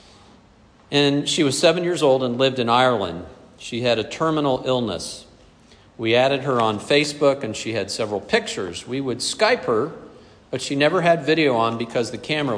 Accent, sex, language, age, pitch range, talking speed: American, male, English, 50-69, 120-145 Hz, 180 wpm